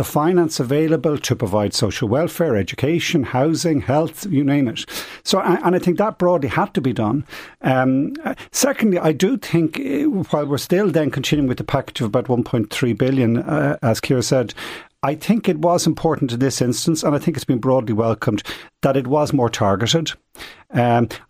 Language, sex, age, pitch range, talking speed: English, male, 50-69, 130-170 Hz, 185 wpm